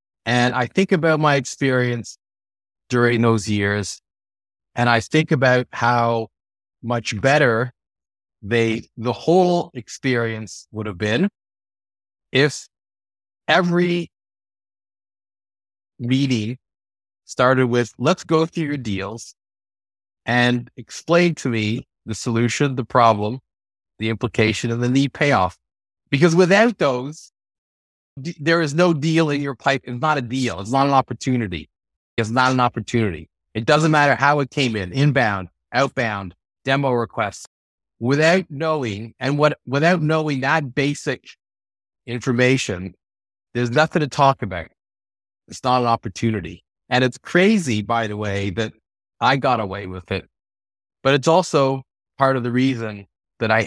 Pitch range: 100-135 Hz